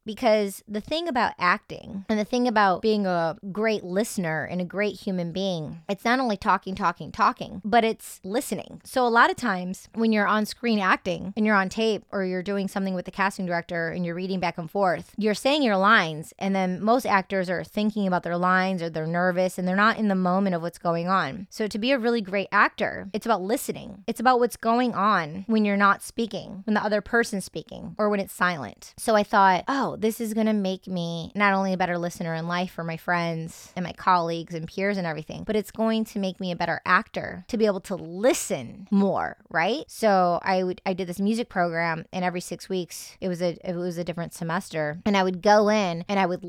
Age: 20-39